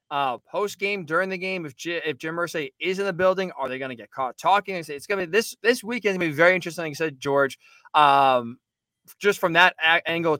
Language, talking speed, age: English, 250 wpm, 20-39